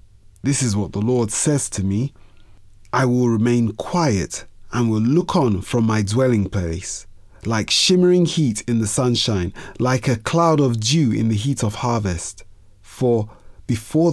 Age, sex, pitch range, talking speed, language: 30-49, male, 100-130 Hz, 160 wpm, English